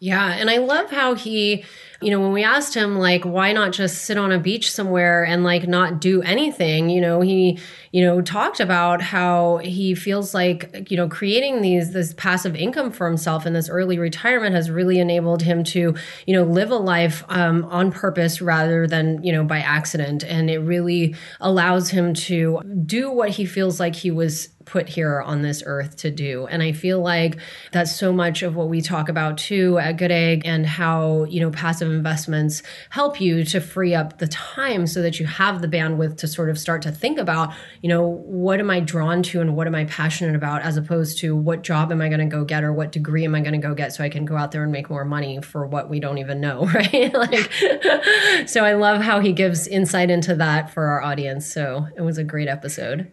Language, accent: English, American